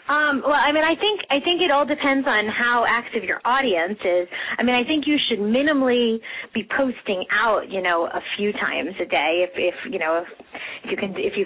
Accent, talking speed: American, 225 wpm